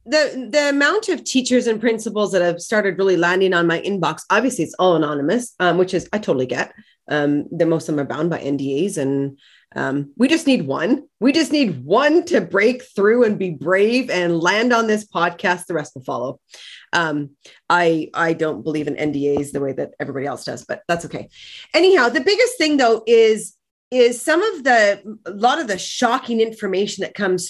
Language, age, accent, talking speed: English, 30-49, American, 205 wpm